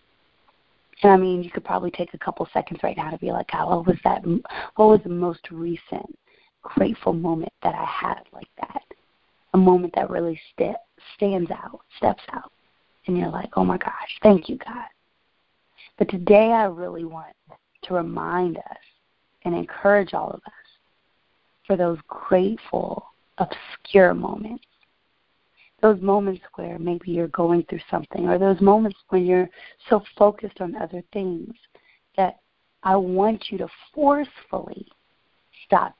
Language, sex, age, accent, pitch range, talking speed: English, female, 20-39, American, 170-205 Hz, 145 wpm